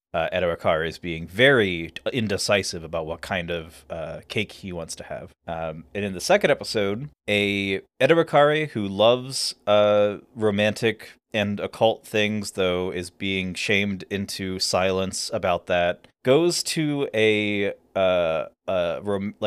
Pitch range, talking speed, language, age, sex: 95-120 Hz, 135 wpm, English, 30-49, male